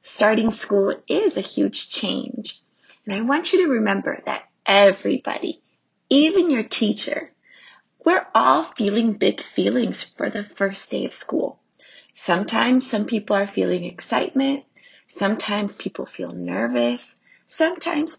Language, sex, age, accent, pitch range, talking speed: English, female, 30-49, American, 200-300 Hz, 130 wpm